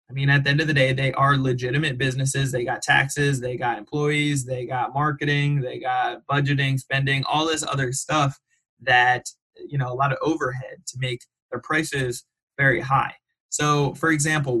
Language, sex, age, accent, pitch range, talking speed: English, male, 20-39, American, 130-155 Hz, 185 wpm